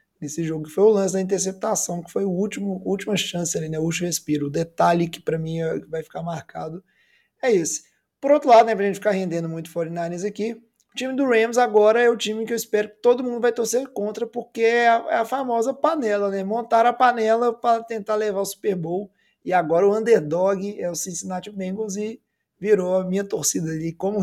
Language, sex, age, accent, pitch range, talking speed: Portuguese, male, 20-39, Brazilian, 175-225 Hz, 215 wpm